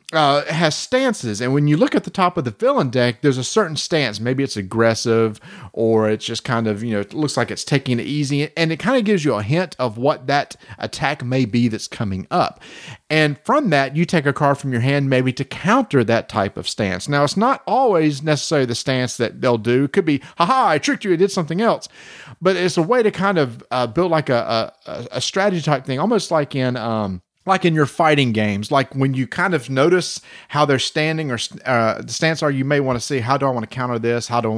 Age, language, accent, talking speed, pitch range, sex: 40-59, English, American, 250 wpm, 125-170 Hz, male